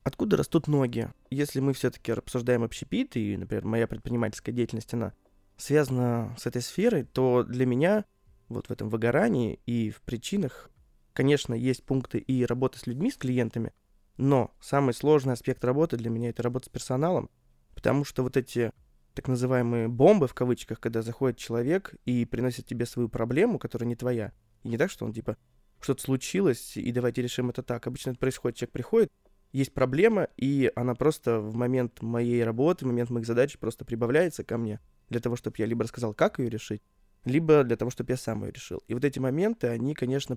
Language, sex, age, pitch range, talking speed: Russian, male, 20-39, 115-135 Hz, 185 wpm